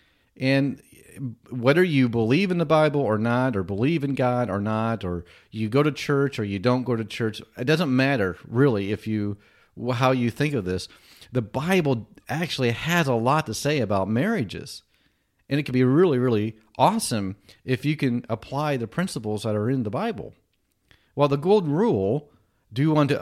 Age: 40-59